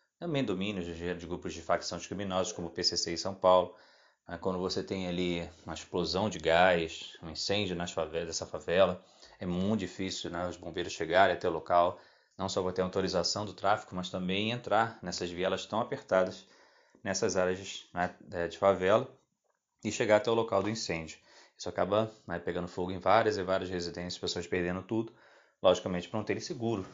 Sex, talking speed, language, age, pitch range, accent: male, 180 wpm, Portuguese, 20-39, 85-100 Hz, Brazilian